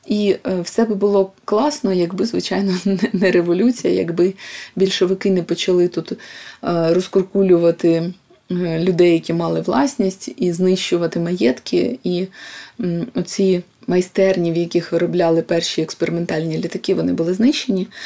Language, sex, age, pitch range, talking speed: Ukrainian, female, 20-39, 175-210 Hz, 115 wpm